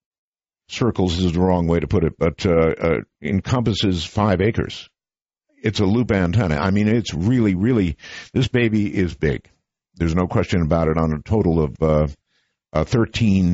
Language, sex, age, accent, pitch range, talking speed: English, male, 50-69, American, 90-120 Hz, 175 wpm